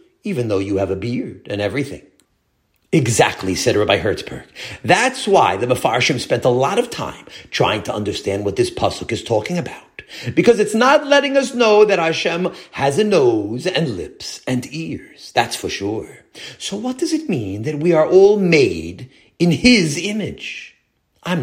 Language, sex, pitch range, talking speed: English, male, 130-215 Hz, 175 wpm